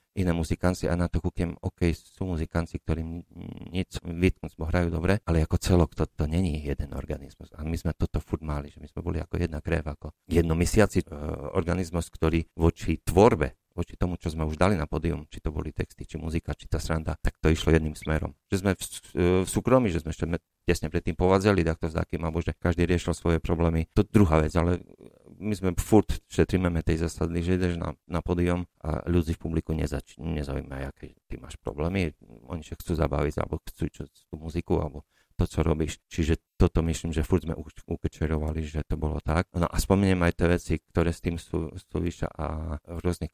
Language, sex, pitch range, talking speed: Slovak, male, 80-90 Hz, 205 wpm